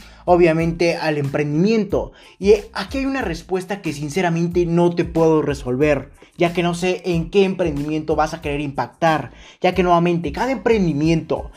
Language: Spanish